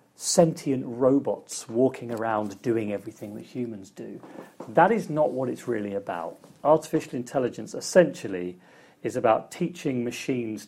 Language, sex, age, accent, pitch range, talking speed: English, male, 40-59, British, 110-150 Hz, 130 wpm